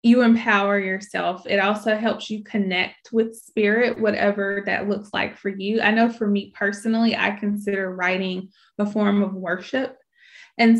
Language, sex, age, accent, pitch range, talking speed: English, female, 20-39, American, 195-235 Hz, 160 wpm